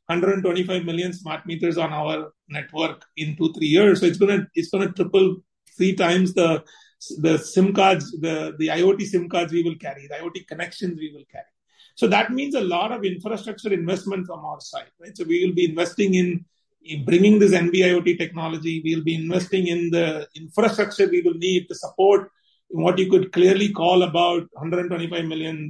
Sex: male